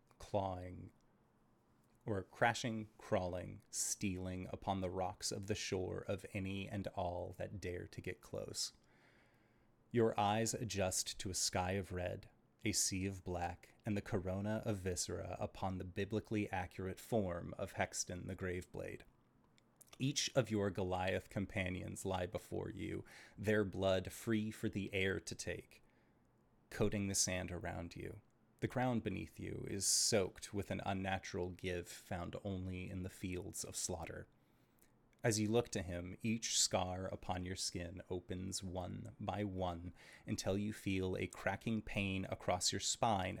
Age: 30-49